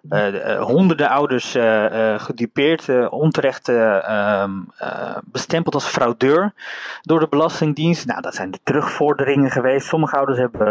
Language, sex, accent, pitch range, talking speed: Dutch, male, Dutch, 115-155 Hz, 130 wpm